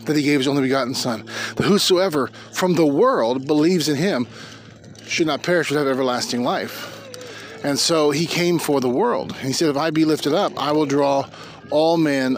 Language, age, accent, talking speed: English, 40-59, American, 195 wpm